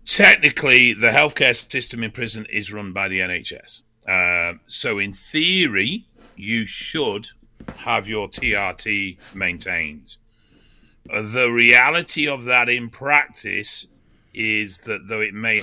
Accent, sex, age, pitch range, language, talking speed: British, male, 40-59, 90-110 Hz, English, 125 wpm